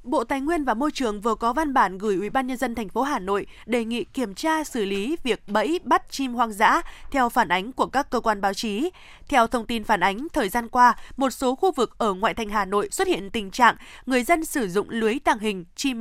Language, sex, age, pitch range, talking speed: Vietnamese, female, 20-39, 220-290 Hz, 260 wpm